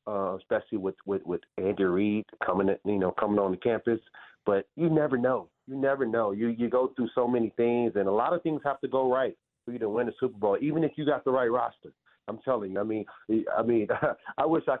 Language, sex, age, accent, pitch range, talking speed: English, male, 30-49, American, 115-150 Hz, 250 wpm